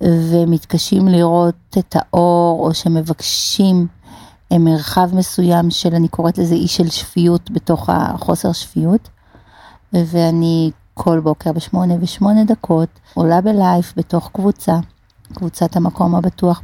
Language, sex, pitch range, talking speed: Hebrew, female, 170-200 Hz, 110 wpm